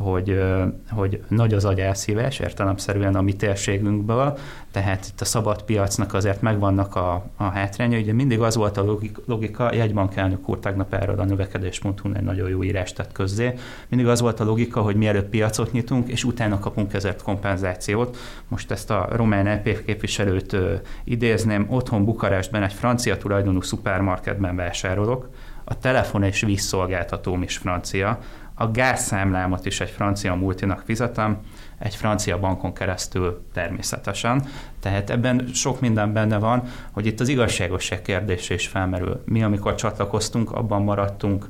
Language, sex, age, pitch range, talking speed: Hungarian, male, 30-49, 95-110 Hz, 145 wpm